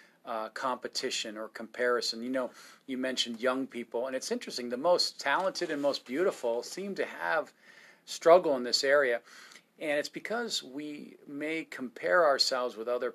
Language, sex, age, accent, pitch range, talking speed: English, male, 40-59, American, 125-155 Hz, 170 wpm